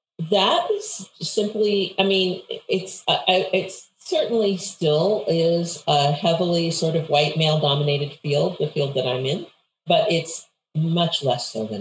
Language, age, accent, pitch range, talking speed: English, 50-69, American, 145-190 Hz, 150 wpm